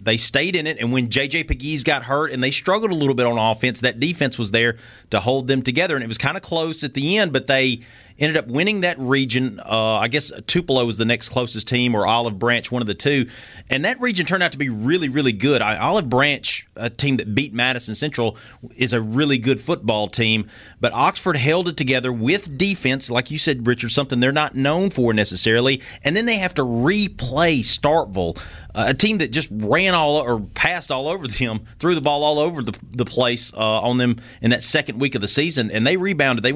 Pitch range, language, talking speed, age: 115-145 Hz, English, 225 wpm, 30-49